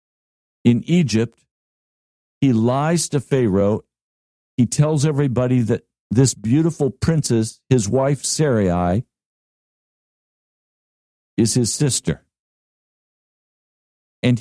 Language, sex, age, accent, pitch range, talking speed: English, male, 50-69, American, 100-135 Hz, 85 wpm